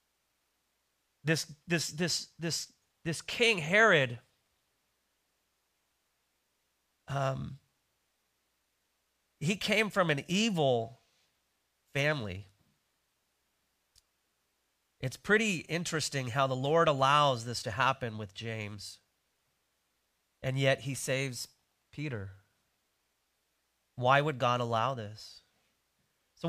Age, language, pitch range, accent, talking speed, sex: 30-49, English, 110-165 Hz, American, 85 wpm, male